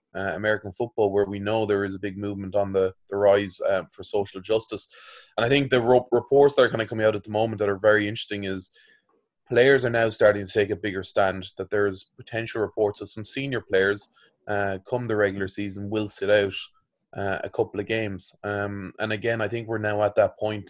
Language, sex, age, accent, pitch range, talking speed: English, male, 20-39, Irish, 100-110 Hz, 225 wpm